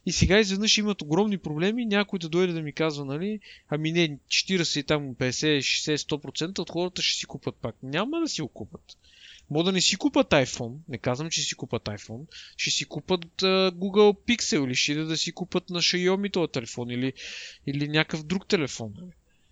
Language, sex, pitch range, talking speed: Bulgarian, male, 130-180 Hz, 195 wpm